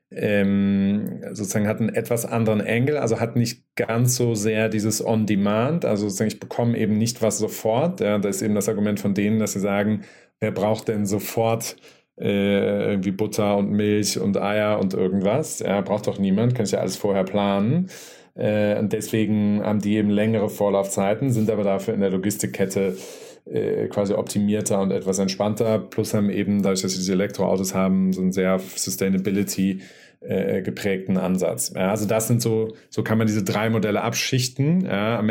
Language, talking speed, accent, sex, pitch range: German, 175 wpm, German, male, 100-110 Hz